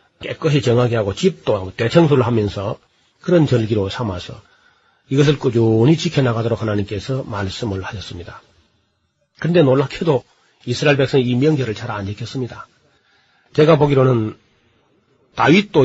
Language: Korean